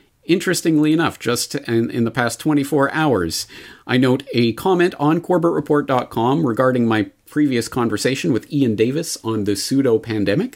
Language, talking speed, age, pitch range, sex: English, 140 wpm, 40-59, 105-150 Hz, male